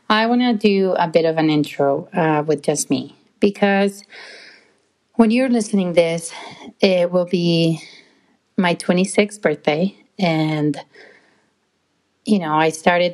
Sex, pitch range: female, 165-210 Hz